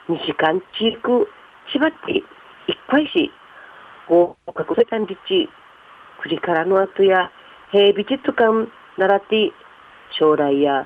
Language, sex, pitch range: Japanese, female, 160-230 Hz